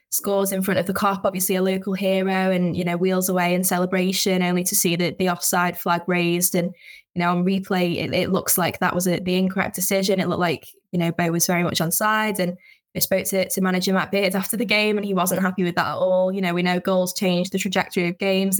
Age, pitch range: 10-29, 185-200 Hz